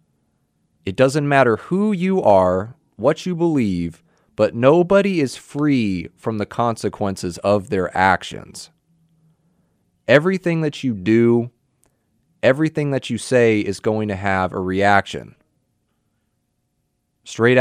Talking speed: 115 wpm